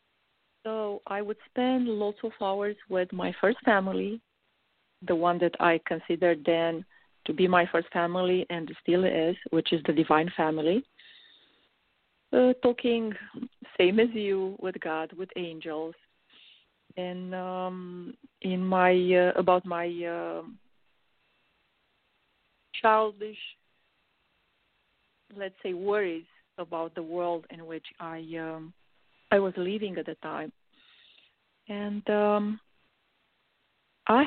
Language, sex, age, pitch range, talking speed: English, female, 40-59, 165-205 Hz, 115 wpm